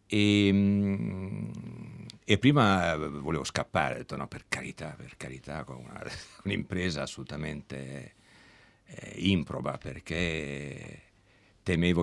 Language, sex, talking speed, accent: Italian, male, 100 wpm, native